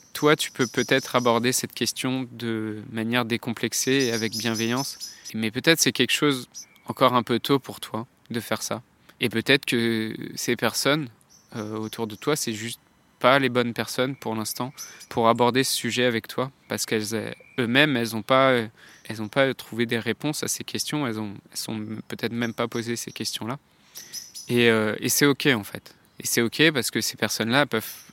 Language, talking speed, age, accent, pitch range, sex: French, 190 wpm, 20-39, French, 110-130 Hz, male